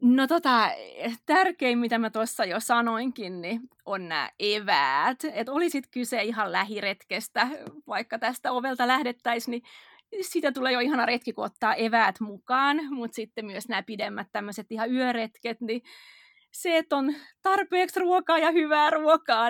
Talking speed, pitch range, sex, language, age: 150 wpm, 230-290 Hz, female, Finnish, 30-49